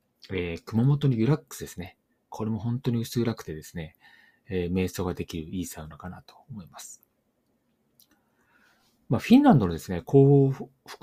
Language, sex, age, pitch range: Japanese, male, 30-49, 90-125 Hz